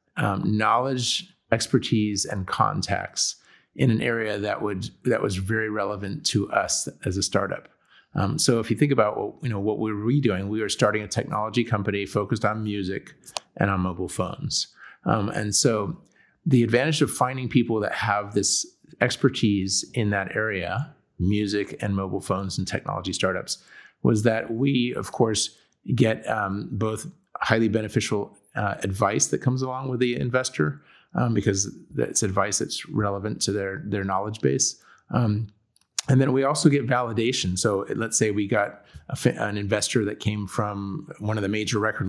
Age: 30-49